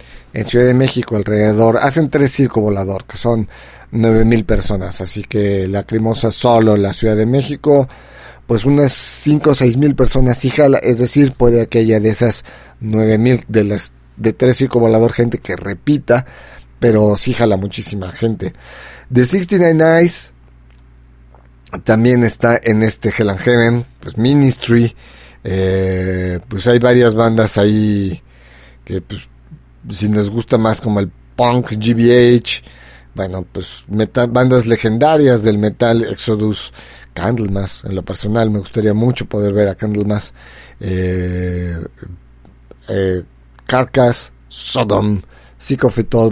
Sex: male